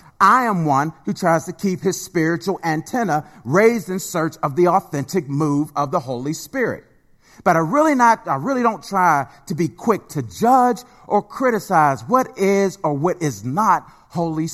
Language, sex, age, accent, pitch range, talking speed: English, male, 40-59, American, 160-210 Hz, 180 wpm